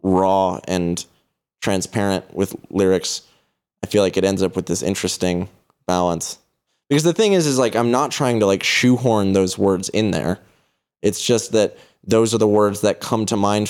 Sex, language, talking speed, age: male, English, 185 wpm, 20-39